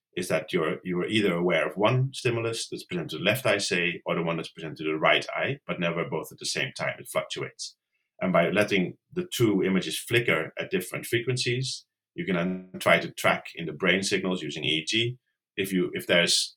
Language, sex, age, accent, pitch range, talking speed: English, male, 30-49, Danish, 85-120 Hz, 215 wpm